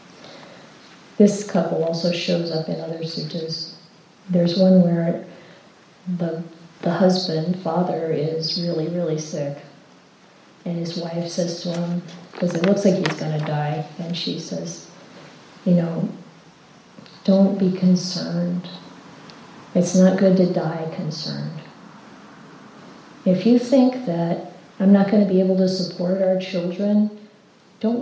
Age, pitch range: 40-59, 170-195 Hz